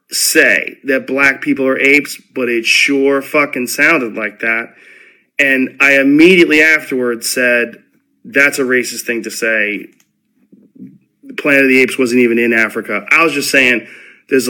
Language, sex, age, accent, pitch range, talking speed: English, male, 40-59, American, 120-150 Hz, 155 wpm